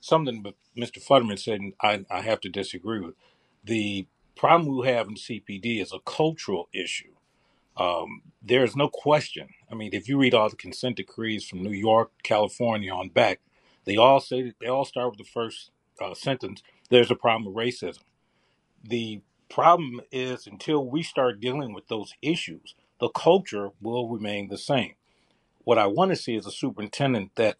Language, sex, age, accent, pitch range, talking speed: English, male, 40-59, American, 110-140 Hz, 185 wpm